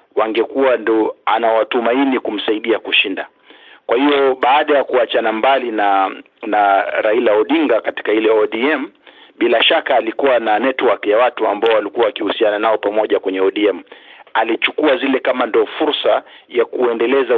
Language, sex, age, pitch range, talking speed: Swahili, male, 50-69, 120-180 Hz, 135 wpm